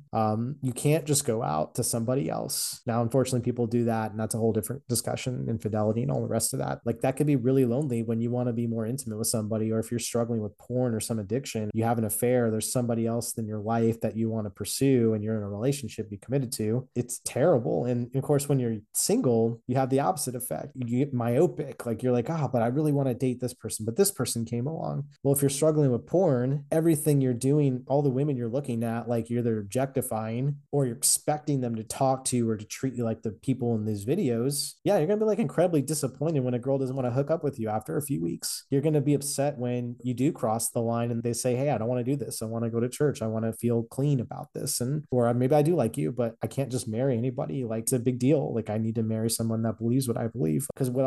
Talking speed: 275 wpm